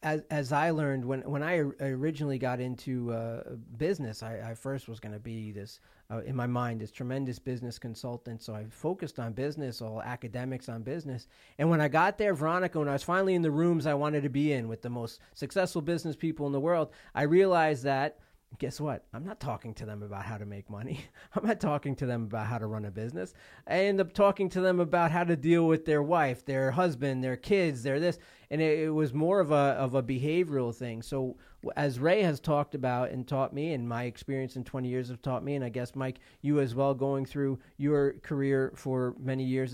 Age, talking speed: 40-59, 230 wpm